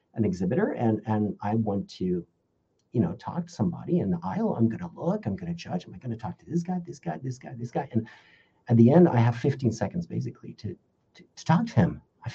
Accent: American